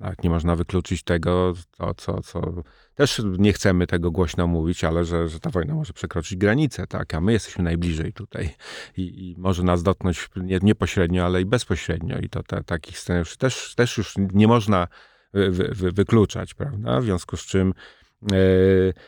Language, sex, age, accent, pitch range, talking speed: Polish, male, 40-59, native, 95-120 Hz, 175 wpm